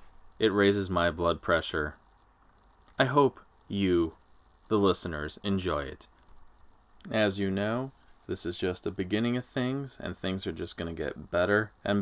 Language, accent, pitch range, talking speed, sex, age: English, American, 90-125 Hz, 155 wpm, male, 20-39